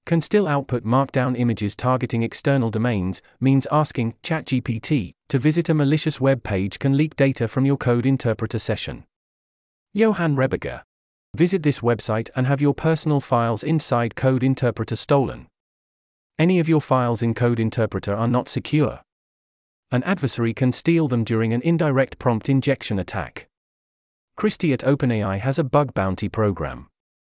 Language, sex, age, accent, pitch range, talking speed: English, male, 40-59, British, 105-140 Hz, 150 wpm